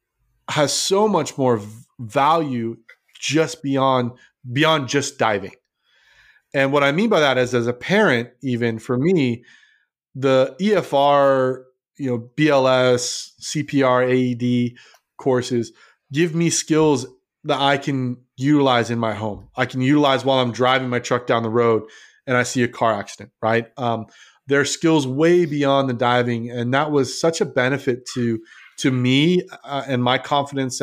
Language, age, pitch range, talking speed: English, 30-49, 120-140 Hz, 155 wpm